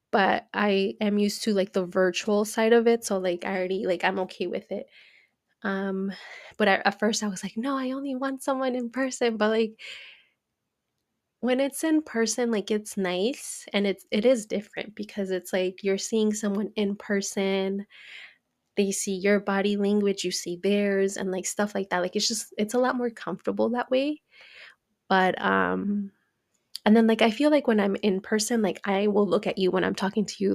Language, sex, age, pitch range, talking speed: English, female, 20-39, 195-230 Hz, 200 wpm